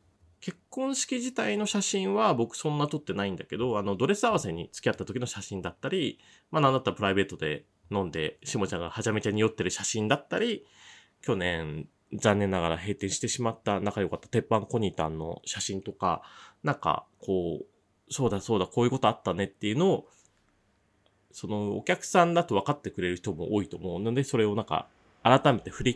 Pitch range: 95-145 Hz